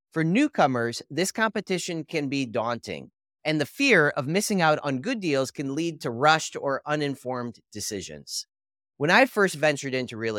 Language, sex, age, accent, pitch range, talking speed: English, male, 30-49, American, 130-175 Hz, 170 wpm